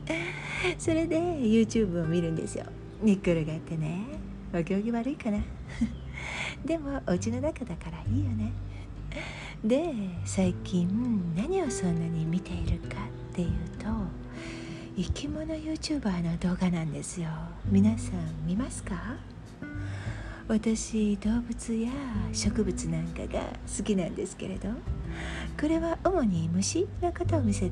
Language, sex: Japanese, female